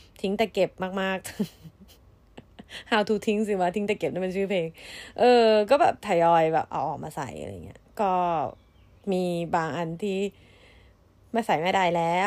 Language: Thai